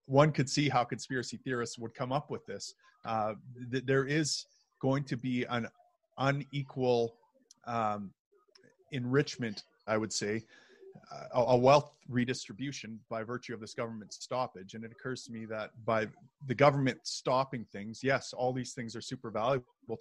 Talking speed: 160 wpm